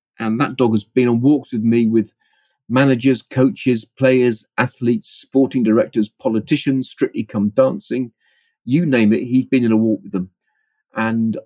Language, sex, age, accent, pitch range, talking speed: English, male, 30-49, British, 105-125 Hz, 160 wpm